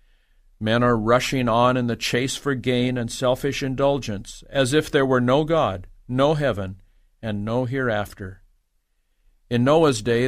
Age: 50-69